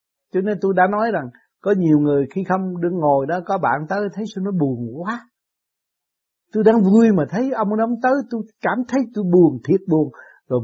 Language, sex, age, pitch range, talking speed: Vietnamese, male, 60-79, 150-210 Hz, 215 wpm